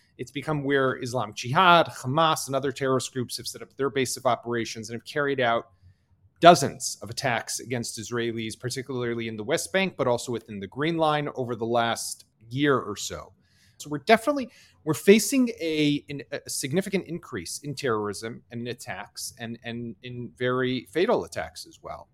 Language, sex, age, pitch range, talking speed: English, male, 30-49, 115-145 Hz, 180 wpm